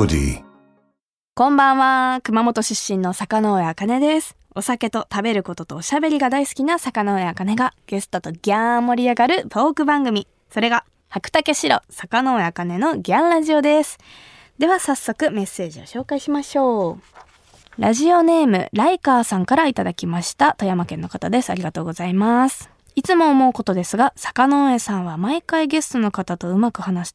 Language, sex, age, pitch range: Japanese, female, 20-39, 190-270 Hz